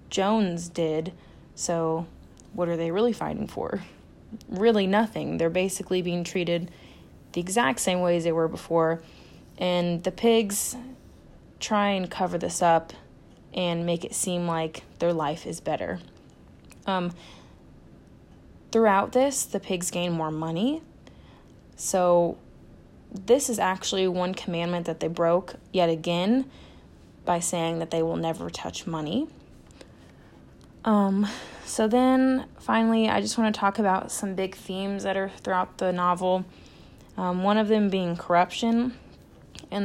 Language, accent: English, American